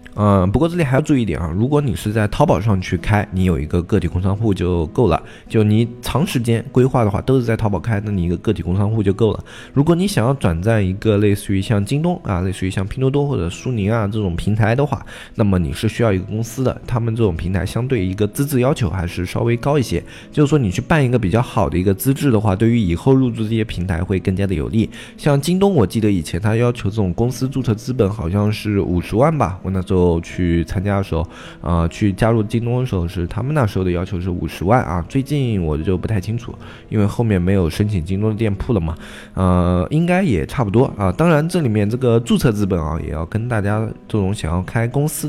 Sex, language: male, Chinese